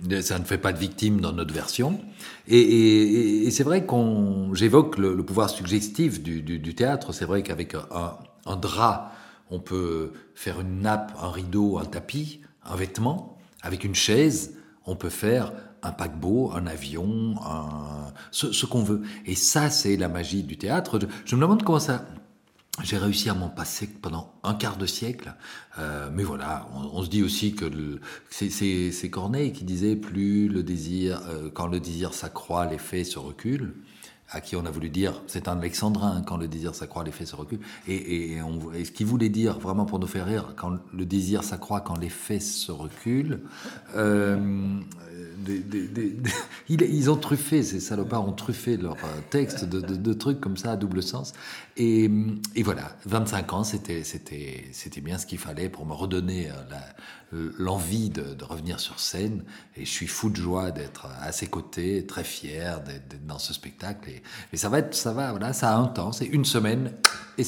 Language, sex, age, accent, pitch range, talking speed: French, male, 50-69, French, 85-110 Hz, 200 wpm